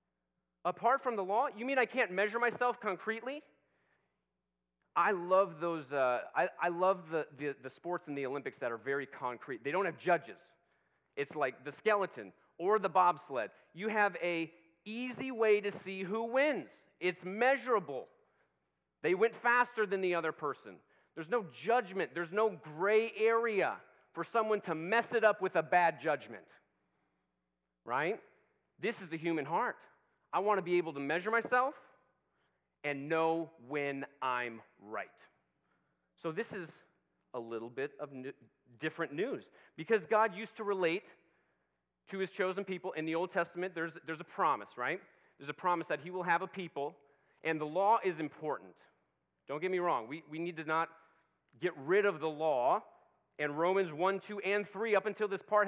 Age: 40-59